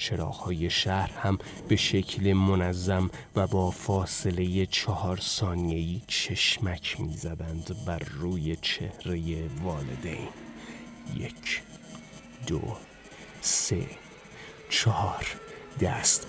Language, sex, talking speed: Persian, male, 85 wpm